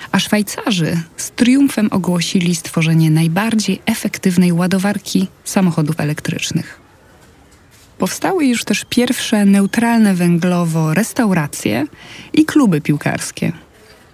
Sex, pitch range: female, 170-215 Hz